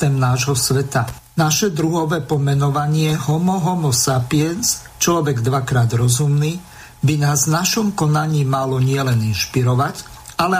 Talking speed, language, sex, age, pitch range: 115 wpm, Slovak, male, 50-69, 130-165 Hz